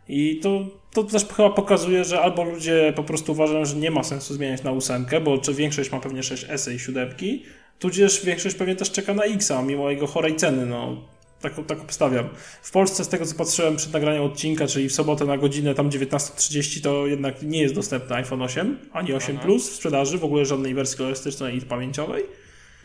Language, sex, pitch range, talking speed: Polish, male, 135-165 Hz, 205 wpm